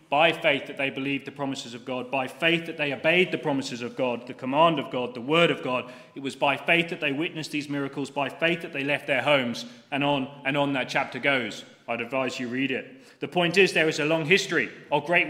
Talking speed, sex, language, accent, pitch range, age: 250 wpm, male, English, British, 135-170 Hz, 30-49